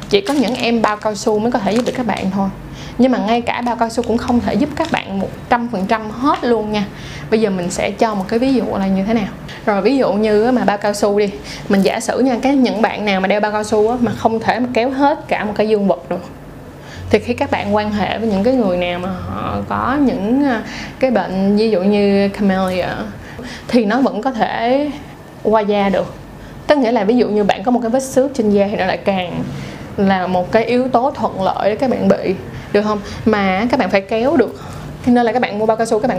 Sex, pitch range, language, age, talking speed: female, 200-245 Hz, Vietnamese, 20-39, 260 wpm